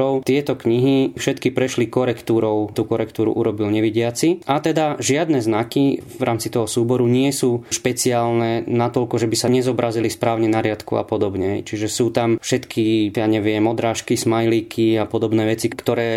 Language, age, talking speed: Slovak, 20-39, 155 wpm